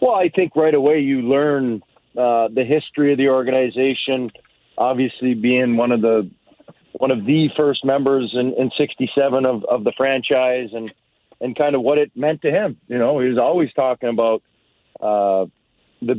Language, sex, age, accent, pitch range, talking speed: English, male, 40-59, American, 120-140 Hz, 180 wpm